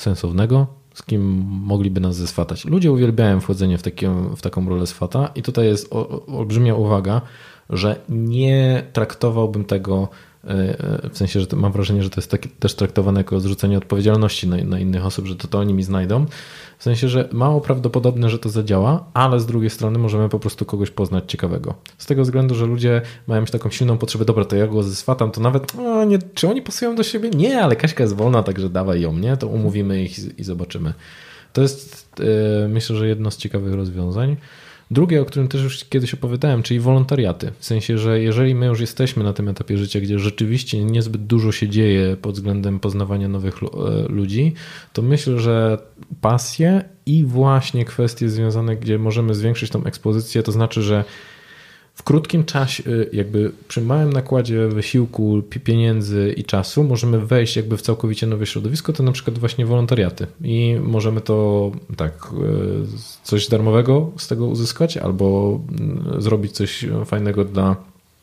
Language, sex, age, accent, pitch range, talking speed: Polish, male, 20-39, native, 100-130 Hz, 170 wpm